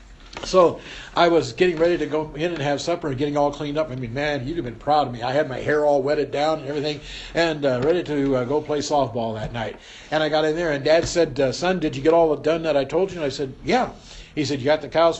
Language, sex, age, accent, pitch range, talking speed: English, male, 60-79, American, 115-170 Hz, 285 wpm